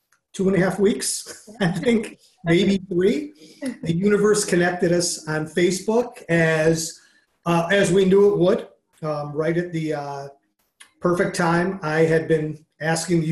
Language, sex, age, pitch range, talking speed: English, male, 40-59, 150-180 Hz, 155 wpm